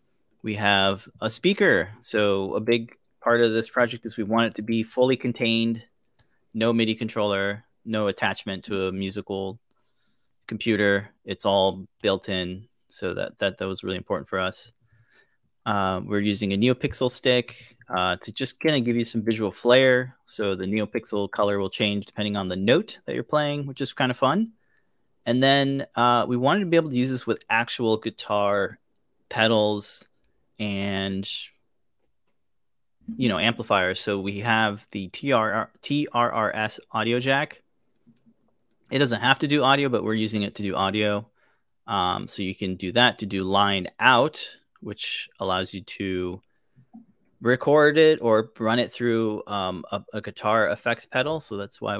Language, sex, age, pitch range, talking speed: English, male, 30-49, 100-120 Hz, 165 wpm